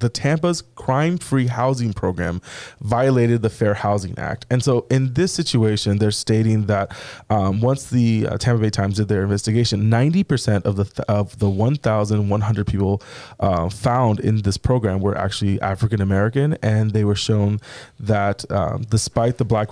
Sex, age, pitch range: male, 20-39, 100-120 Hz